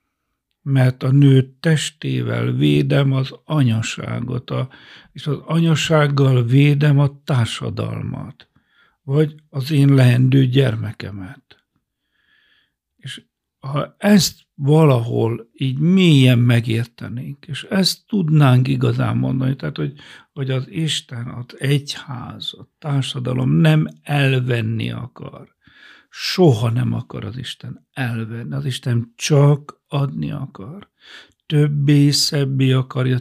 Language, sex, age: Hungarian, male, 60-79